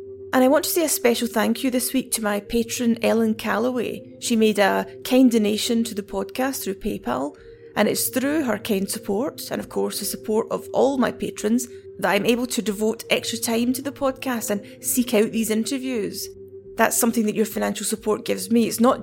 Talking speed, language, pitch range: 210 wpm, English, 205-250 Hz